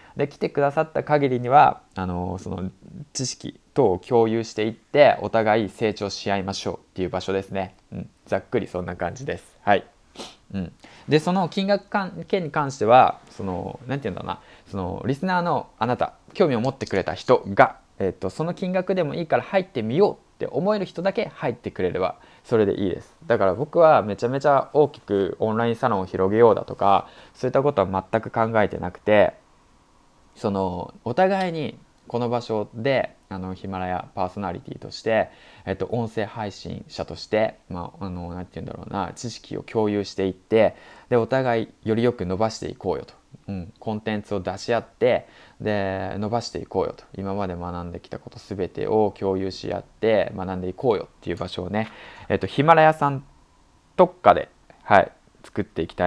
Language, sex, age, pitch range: Japanese, male, 20-39, 95-135 Hz